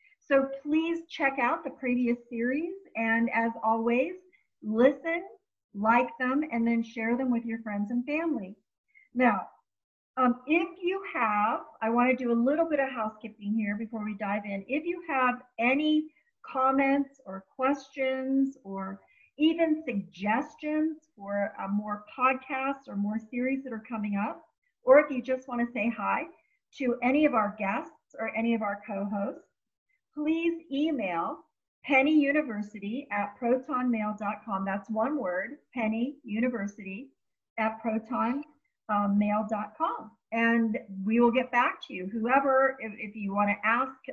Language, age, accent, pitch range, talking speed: English, 50-69, American, 220-280 Hz, 145 wpm